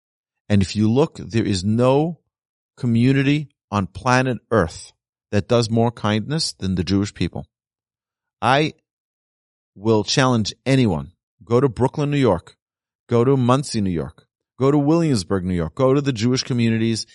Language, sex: English, male